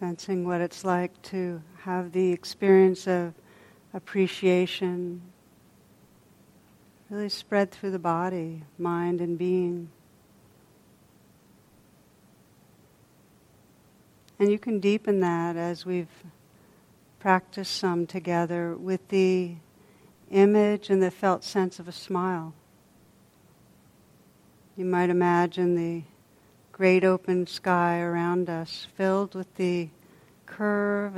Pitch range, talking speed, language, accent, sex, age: 175-190 Hz, 100 wpm, English, American, female, 60-79